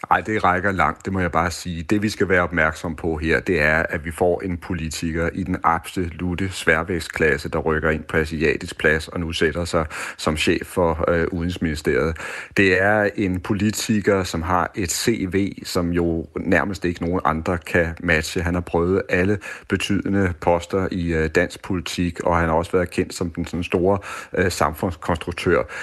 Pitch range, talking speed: 85-100 Hz, 185 wpm